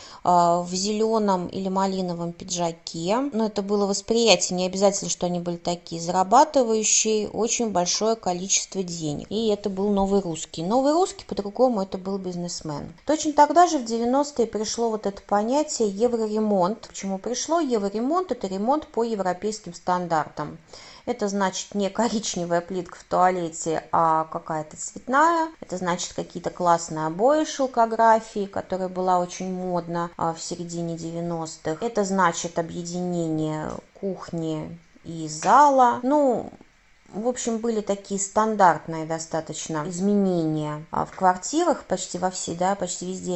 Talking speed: 130 wpm